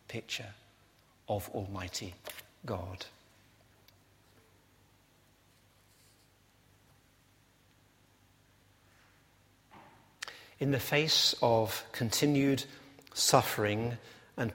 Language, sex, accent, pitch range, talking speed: English, male, British, 95-130 Hz, 45 wpm